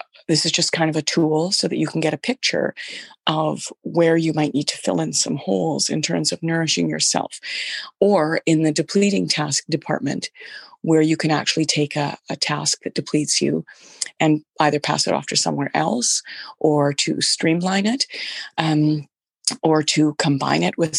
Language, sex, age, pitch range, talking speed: English, female, 30-49, 150-170 Hz, 185 wpm